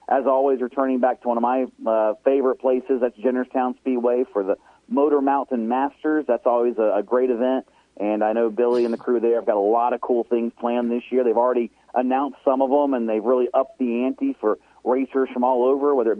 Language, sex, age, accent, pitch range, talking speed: English, male, 40-59, American, 115-135 Hz, 230 wpm